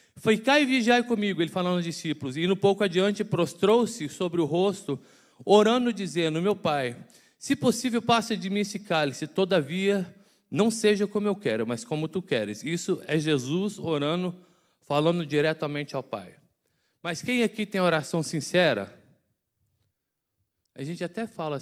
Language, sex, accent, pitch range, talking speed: Portuguese, male, Brazilian, 165-255 Hz, 155 wpm